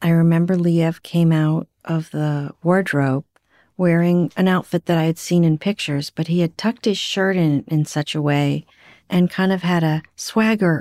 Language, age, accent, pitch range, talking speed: English, 50-69, American, 150-190 Hz, 190 wpm